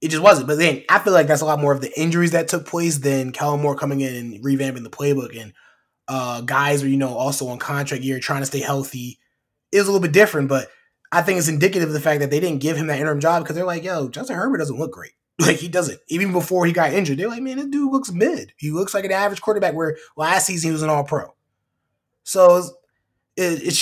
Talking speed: 260 wpm